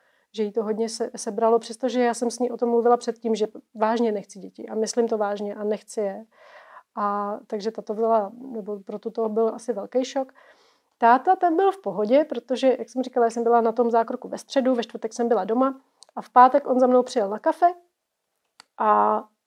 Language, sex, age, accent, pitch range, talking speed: Czech, female, 30-49, native, 220-255 Hz, 210 wpm